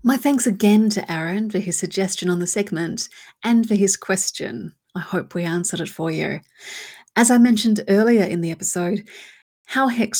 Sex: female